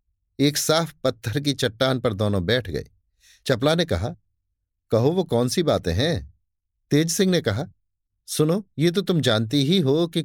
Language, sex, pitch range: Hindi, male, 95-150 Hz